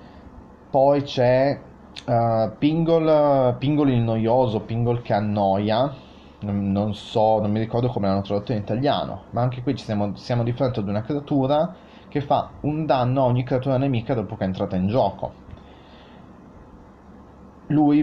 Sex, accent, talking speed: male, native, 155 wpm